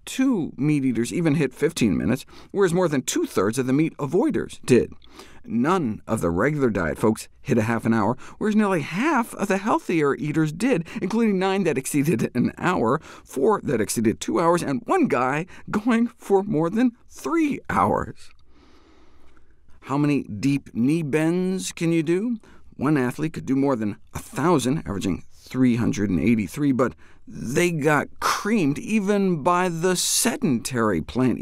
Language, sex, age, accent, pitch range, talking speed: English, male, 50-69, American, 125-195 Hz, 155 wpm